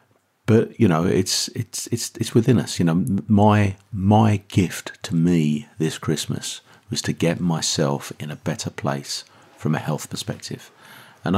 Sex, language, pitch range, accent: male, English, 75-95 Hz, British